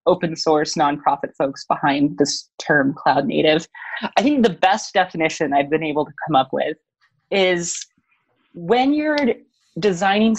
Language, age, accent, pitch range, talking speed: English, 20-39, American, 155-195 Hz, 140 wpm